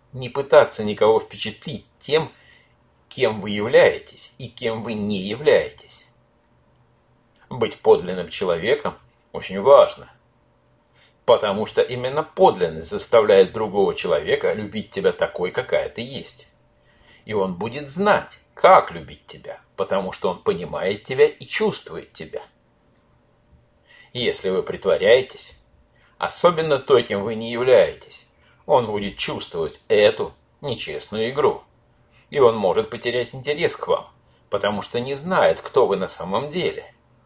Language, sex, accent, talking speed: Russian, male, native, 125 wpm